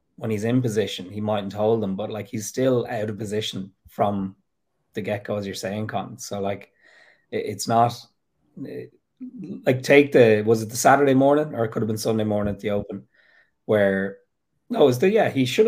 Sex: male